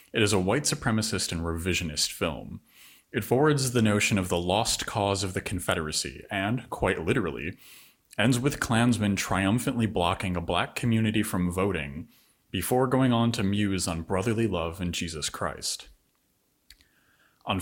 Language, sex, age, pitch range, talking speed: English, male, 30-49, 90-115 Hz, 150 wpm